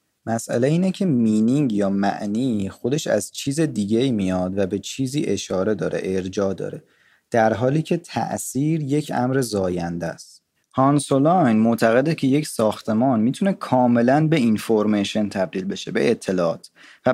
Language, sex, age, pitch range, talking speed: Persian, male, 30-49, 105-135 Hz, 145 wpm